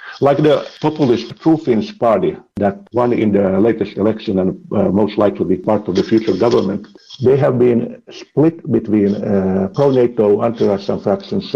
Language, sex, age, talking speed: English, male, 50-69, 155 wpm